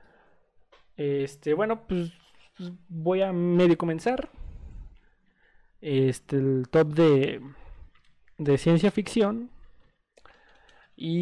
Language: Spanish